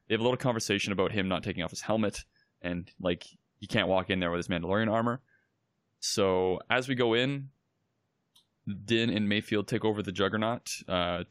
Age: 20-39